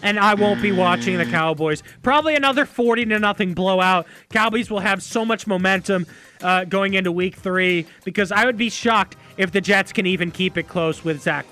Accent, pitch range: American, 185-255 Hz